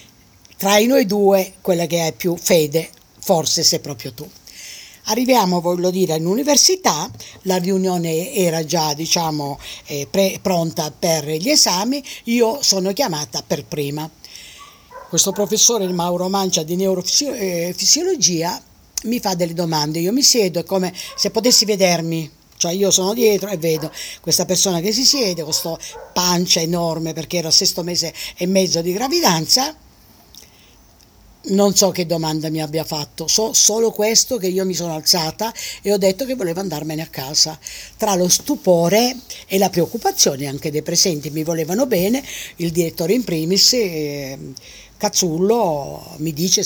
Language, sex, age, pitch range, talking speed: Italian, female, 50-69, 160-200 Hz, 150 wpm